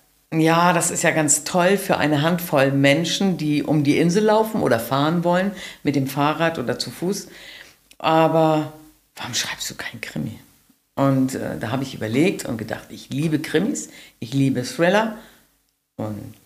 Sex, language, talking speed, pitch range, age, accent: female, German, 165 wpm, 140-180 Hz, 50-69, German